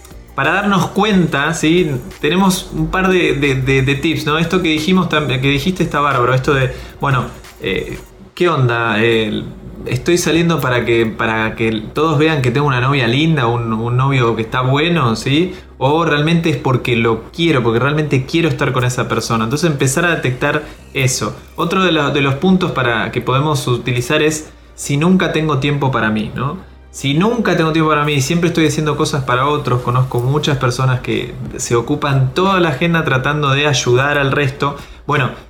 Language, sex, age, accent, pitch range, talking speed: Spanish, male, 20-39, Argentinian, 125-170 Hz, 185 wpm